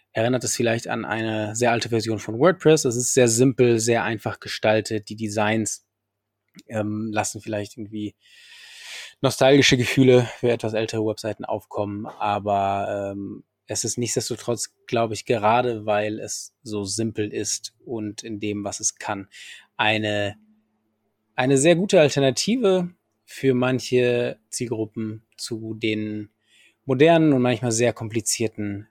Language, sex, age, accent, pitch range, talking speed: German, male, 20-39, German, 105-125 Hz, 135 wpm